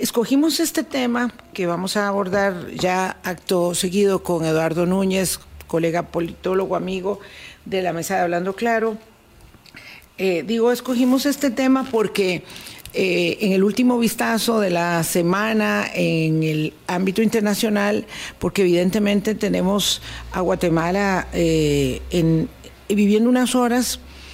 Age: 50-69